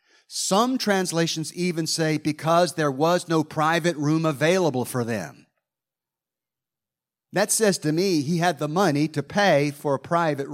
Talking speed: 150 wpm